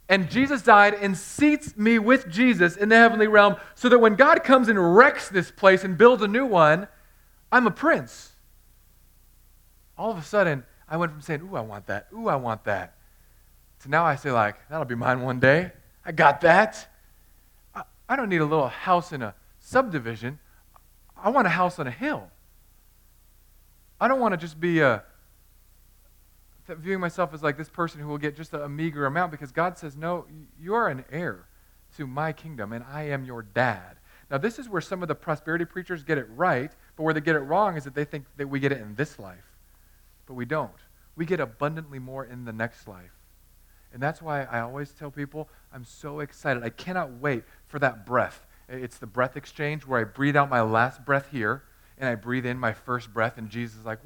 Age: 40-59